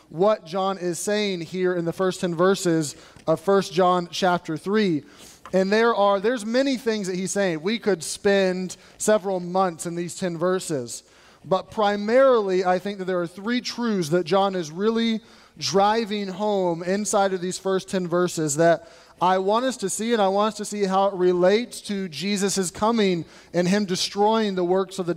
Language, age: English, 30-49